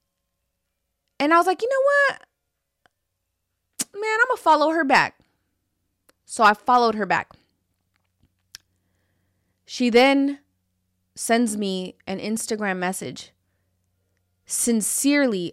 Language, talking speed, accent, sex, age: English, 100 wpm, American, female, 20-39